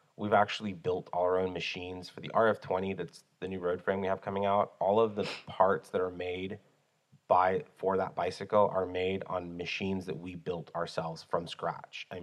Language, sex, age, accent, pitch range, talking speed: English, male, 30-49, American, 90-100 Hz, 200 wpm